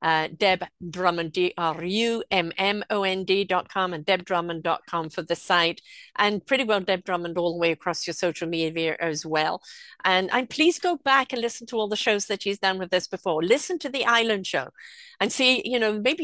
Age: 50-69